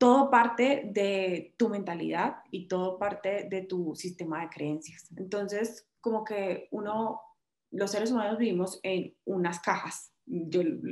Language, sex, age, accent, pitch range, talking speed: Spanish, female, 20-39, Colombian, 185-230 Hz, 145 wpm